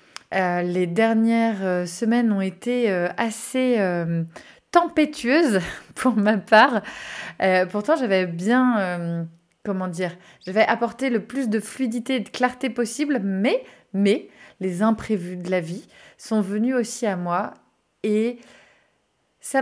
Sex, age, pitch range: female, 20-39, 195-250 Hz